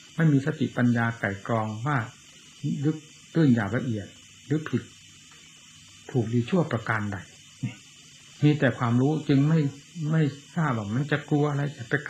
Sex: male